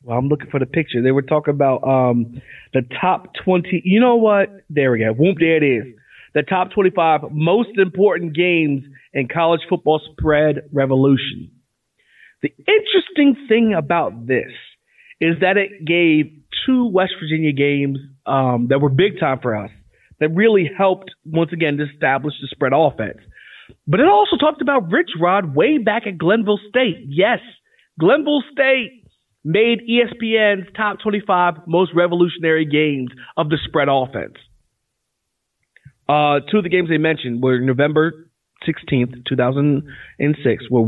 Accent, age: American, 30-49